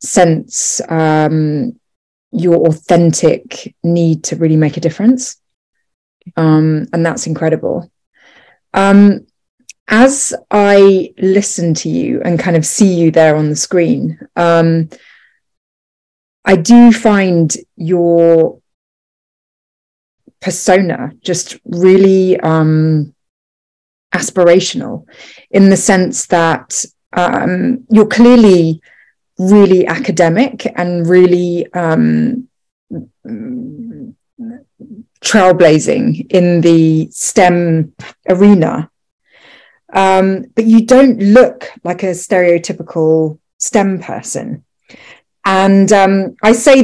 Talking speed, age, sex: 90 wpm, 20-39, female